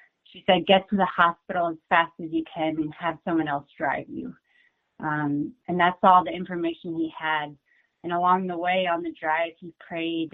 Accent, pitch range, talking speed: American, 160-185 Hz, 195 wpm